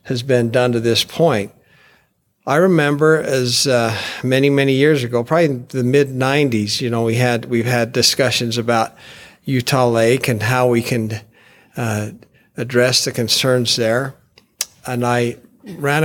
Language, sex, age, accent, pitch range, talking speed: English, male, 50-69, American, 115-130 Hz, 155 wpm